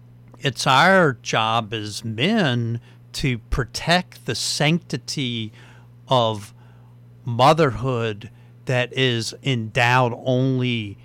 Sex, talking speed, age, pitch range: male, 80 wpm, 50-69, 110-130 Hz